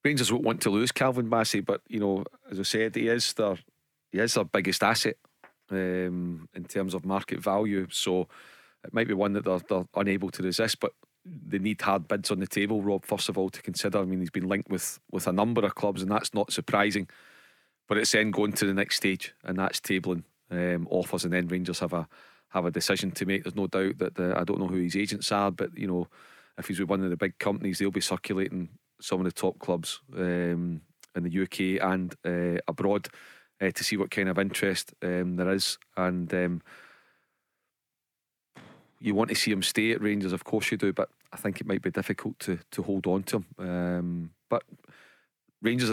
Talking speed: 220 wpm